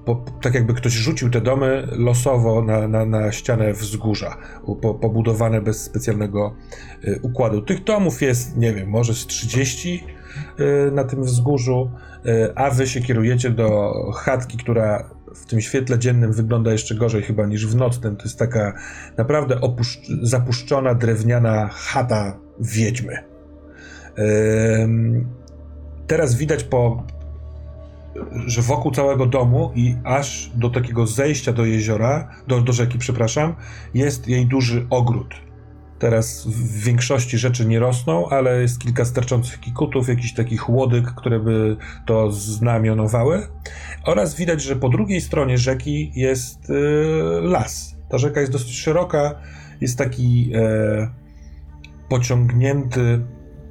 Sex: male